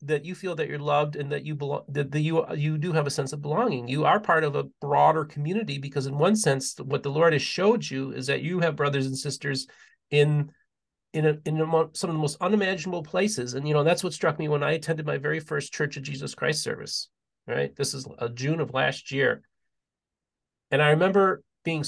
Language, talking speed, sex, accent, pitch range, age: English, 230 wpm, male, American, 135-155 Hz, 40-59